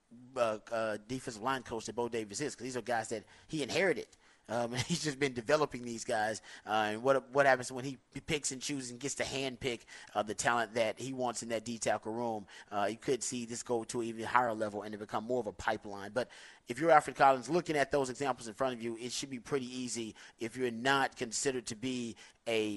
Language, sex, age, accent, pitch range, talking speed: English, male, 30-49, American, 115-140 Hz, 240 wpm